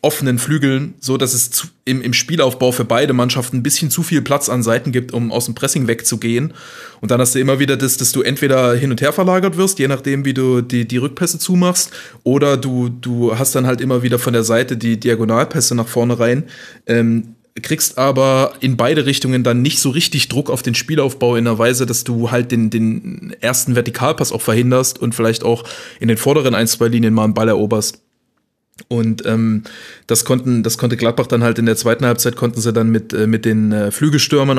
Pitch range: 115-140 Hz